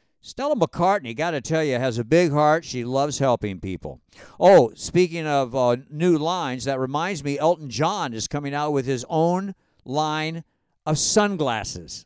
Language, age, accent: English, 50-69, American